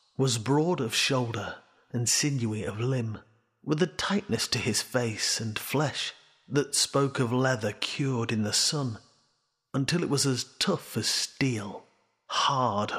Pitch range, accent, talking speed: 110-140 Hz, British, 150 wpm